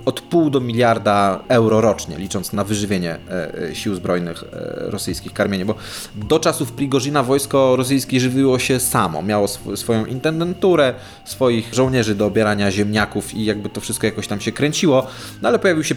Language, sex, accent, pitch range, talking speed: Polish, male, native, 115-145 Hz, 170 wpm